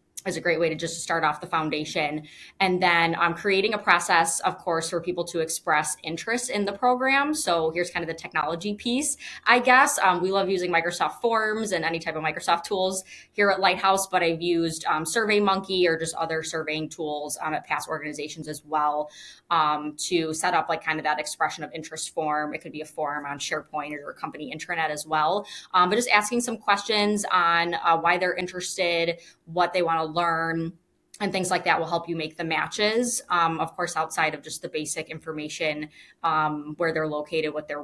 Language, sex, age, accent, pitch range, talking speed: English, female, 20-39, American, 155-190 Hz, 210 wpm